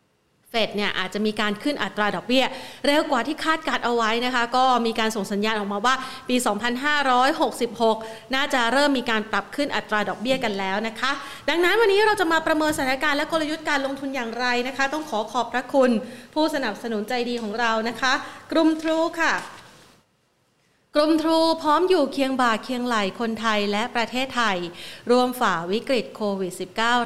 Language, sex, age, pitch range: Thai, female, 30-49, 210-275 Hz